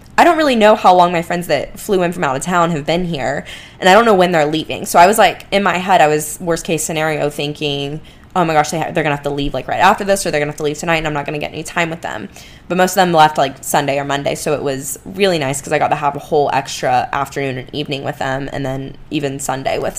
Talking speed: 305 wpm